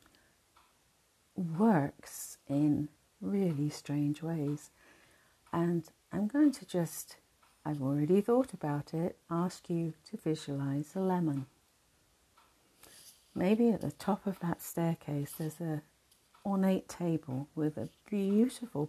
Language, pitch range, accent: English, 150-180 Hz, British